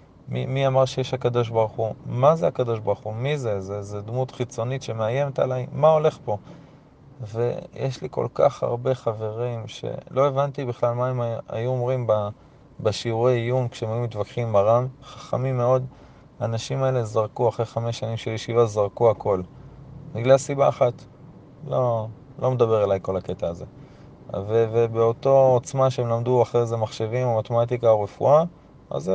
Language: Hebrew